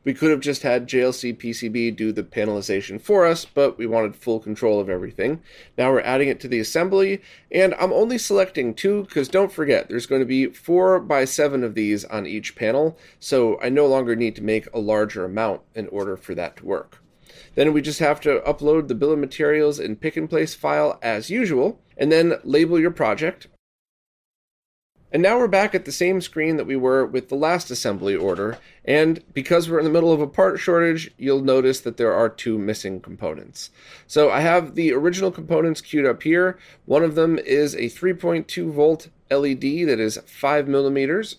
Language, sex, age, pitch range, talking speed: English, male, 30-49, 120-165 Hz, 200 wpm